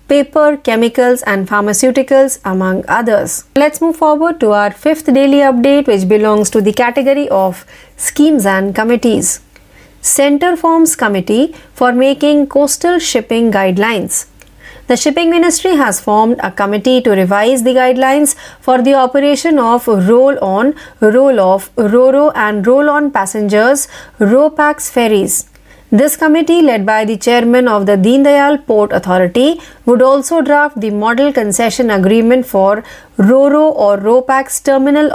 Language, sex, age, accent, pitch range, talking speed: Marathi, female, 30-49, native, 215-285 Hz, 140 wpm